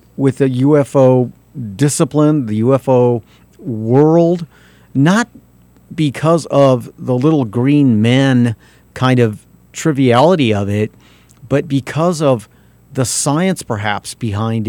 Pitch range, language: 115-150 Hz, English